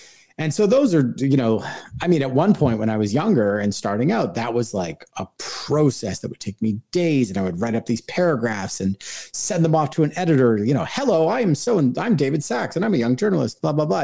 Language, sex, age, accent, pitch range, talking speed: English, male, 30-49, American, 105-145 Hz, 250 wpm